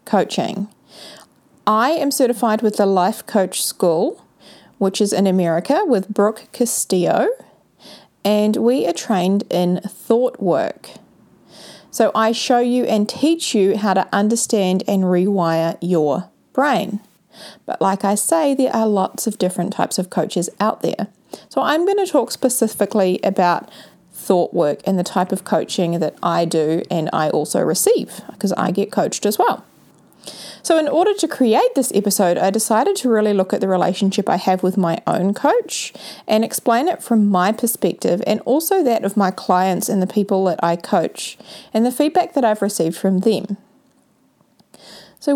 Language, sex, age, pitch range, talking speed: English, female, 30-49, 185-235 Hz, 165 wpm